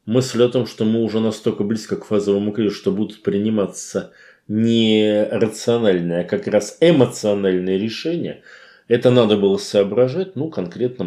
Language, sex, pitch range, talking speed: Russian, male, 100-155 Hz, 145 wpm